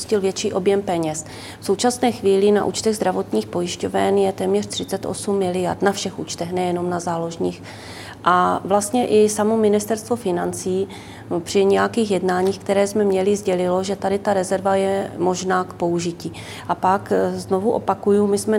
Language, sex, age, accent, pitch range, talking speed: Czech, female, 30-49, native, 185-215 Hz, 150 wpm